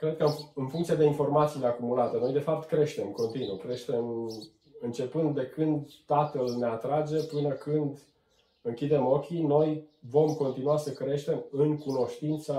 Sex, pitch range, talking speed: male, 125-150 Hz, 145 wpm